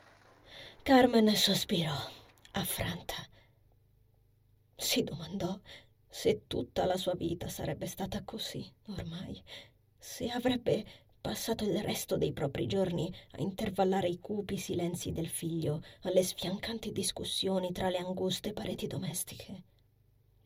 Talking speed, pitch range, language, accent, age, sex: 110 wpm, 165-245 Hz, Italian, native, 20-39, female